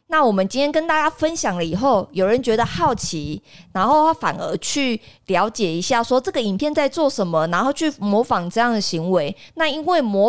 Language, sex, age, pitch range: Chinese, female, 20-39, 180-245 Hz